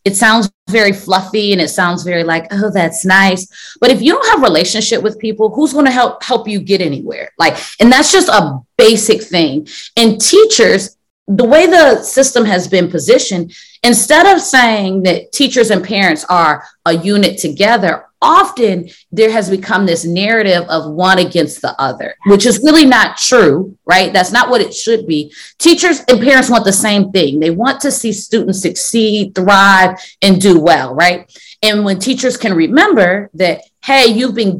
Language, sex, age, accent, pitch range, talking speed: English, female, 30-49, American, 175-235 Hz, 180 wpm